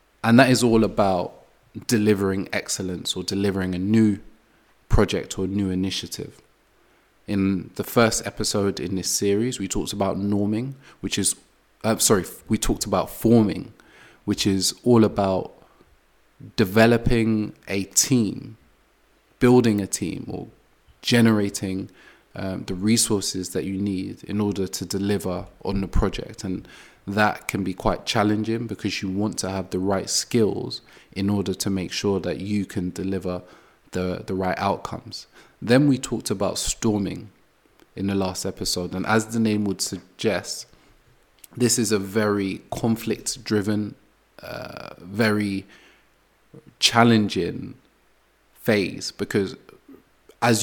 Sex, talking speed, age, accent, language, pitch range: male, 135 wpm, 20-39, British, English, 95-110 Hz